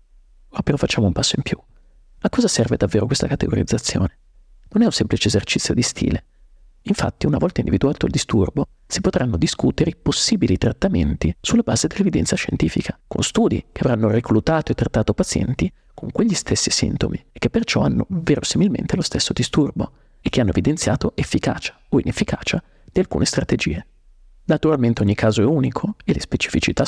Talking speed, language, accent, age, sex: 165 wpm, Italian, native, 40-59, male